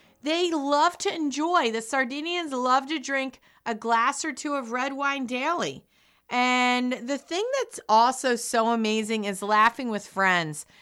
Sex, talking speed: female, 155 wpm